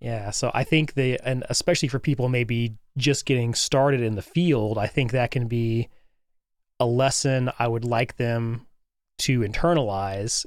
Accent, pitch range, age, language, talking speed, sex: American, 110-135 Hz, 30-49, English, 165 wpm, male